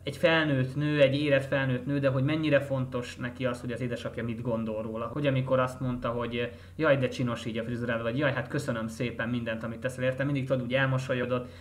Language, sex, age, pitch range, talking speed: Hungarian, male, 20-39, 120-135 Hz, 210 wpm